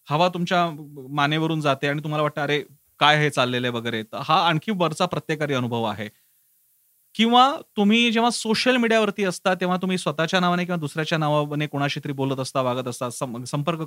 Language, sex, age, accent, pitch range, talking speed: Marathi, male, 30-49, native, 140-180 Hz, 75 wpm